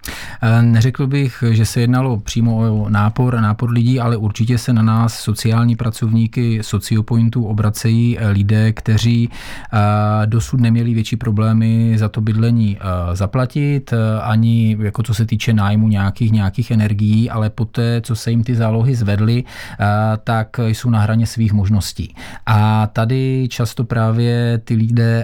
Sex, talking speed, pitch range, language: male, 140 wpm, 110-115 Hz, Czech